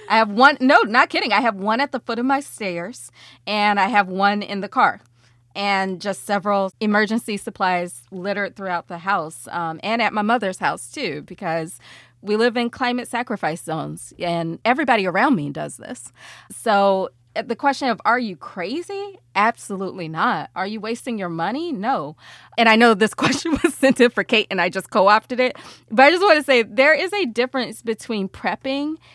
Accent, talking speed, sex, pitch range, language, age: American, 190 wpm, female, 190-245 Hz, English, 30-49